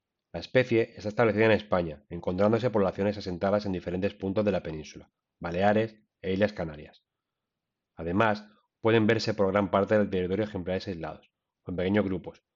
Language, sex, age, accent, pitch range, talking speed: Spanish, male, 30-49, Spanish, 95-110 Hz, 160 wpm